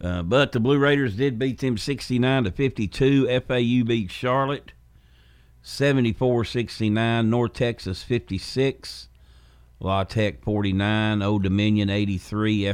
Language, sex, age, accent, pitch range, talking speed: English, male, 50-69, American, 90-115 Hz, 115 wpm